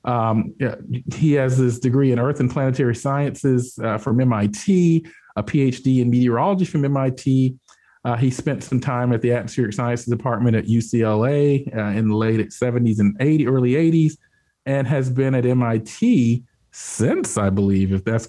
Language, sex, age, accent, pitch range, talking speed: English, male, 40-59, American, 110-130 Hz, 160 wpm